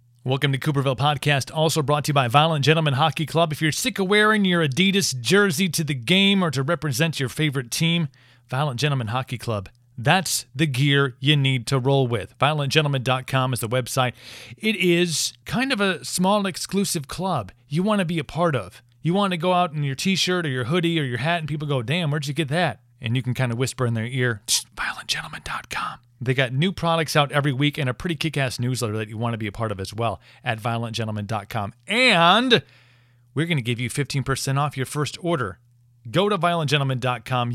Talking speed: 210 wpm